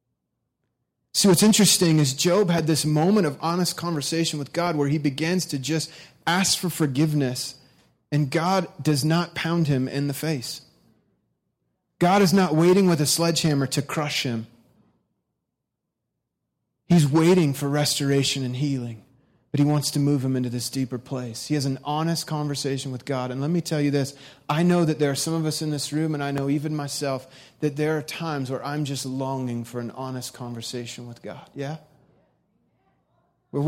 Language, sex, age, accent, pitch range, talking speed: English, male, 30-49, American, 130-160 Hz, 180 wpm